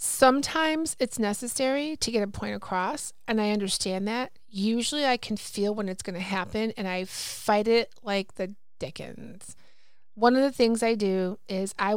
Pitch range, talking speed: 195-245 Hz, 180 wpm